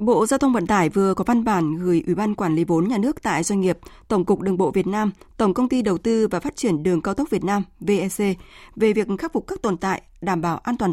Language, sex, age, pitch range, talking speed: Vietnamese, female, 20-39, 185-240 Hz, 280 wpm